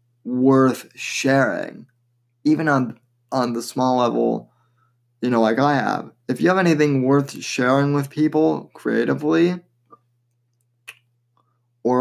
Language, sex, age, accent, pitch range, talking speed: English, male, 20-39, American, 120-135 Hz, 115 wpm